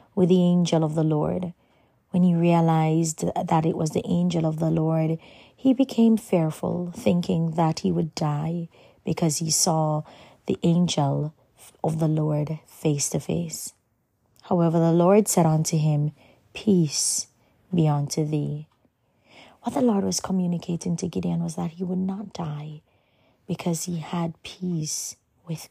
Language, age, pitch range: English, 30-49, 155-185 Hz